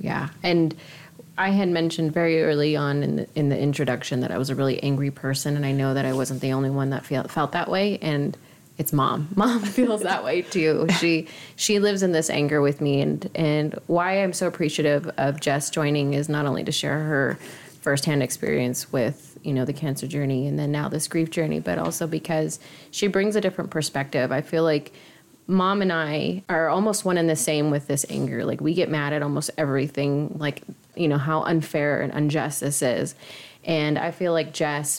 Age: 20-39